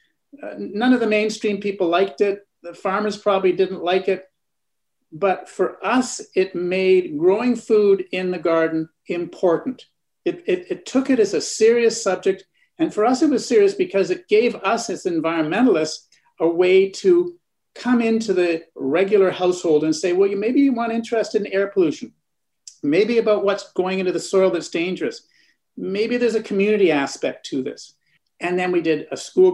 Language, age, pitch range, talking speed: English, 50-69, 180-255 Hz, 175 wpm